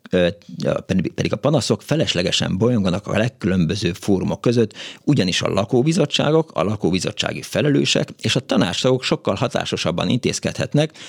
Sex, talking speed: male, 115 wpm